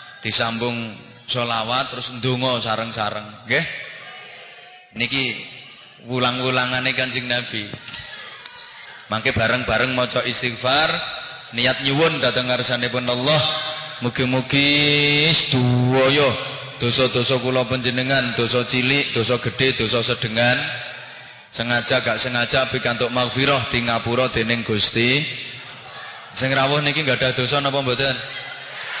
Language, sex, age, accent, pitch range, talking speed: English, male, 20-39, Indonesian, 115-130 Hz, 100 wpm